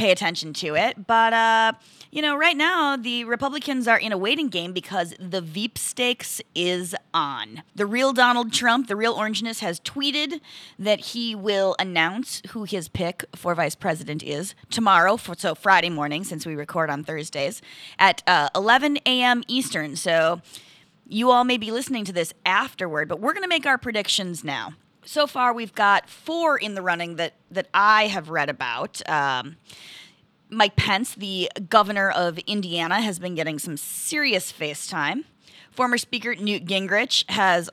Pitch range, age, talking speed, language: 175-255 Hz, 20-39, 170 wpm, English